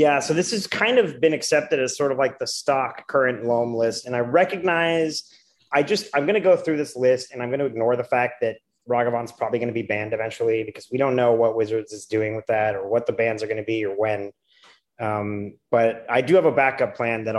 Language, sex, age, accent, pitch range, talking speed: English, male, 30-49, American, 110-135 Hz, 250 wpm